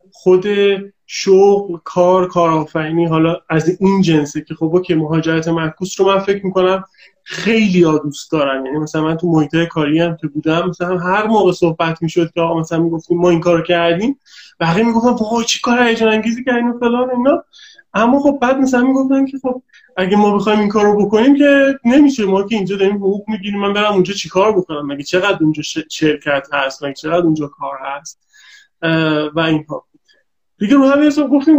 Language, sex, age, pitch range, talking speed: Persian, male, 20-39, 160-210 Hz, 190 wpm